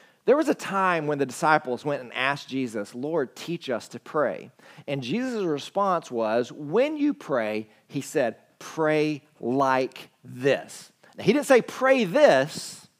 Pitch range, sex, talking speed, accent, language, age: 125-180 Hz, male, 150 wpm, American, English, 40-59